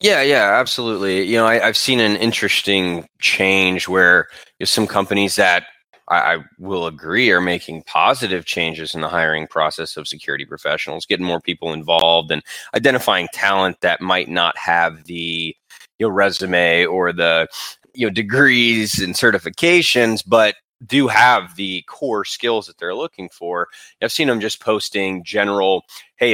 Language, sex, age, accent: English, male, 20-39, American